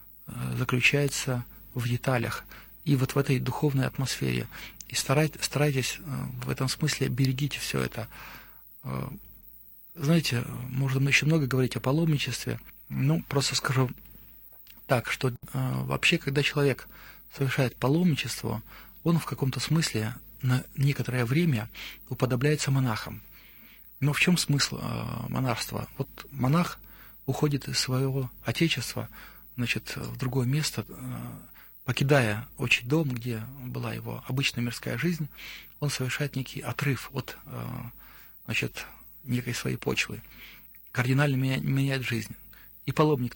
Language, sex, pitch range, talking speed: Russian, male, 115-145 Hz, 110 wpm